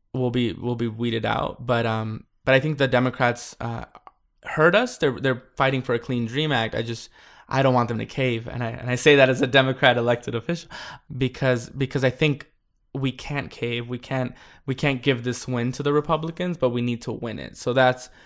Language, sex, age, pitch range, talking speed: English, male, 20-39, 115-135 Hz, 225 wpm